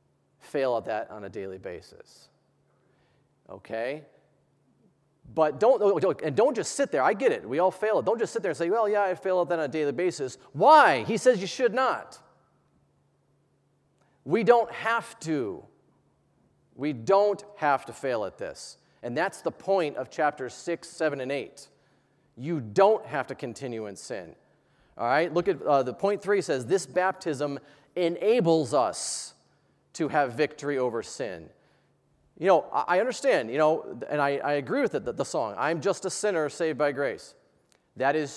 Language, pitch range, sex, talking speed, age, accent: English, 150-210 Hz, male, 175 wpm, 40-59, American